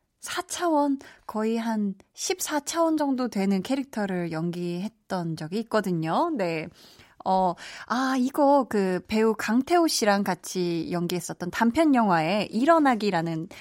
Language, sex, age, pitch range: Korean, female, 20-39, 180-260 Hz